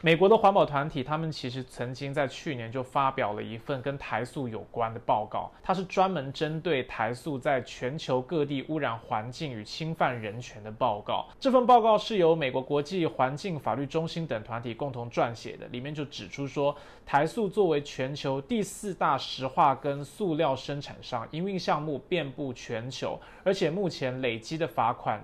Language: Chinese